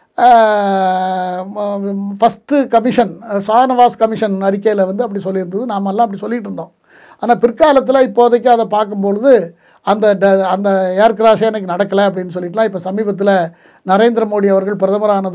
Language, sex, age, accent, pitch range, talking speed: Tamil, male, 60-79, native, 195-230 Hz, 115 wpm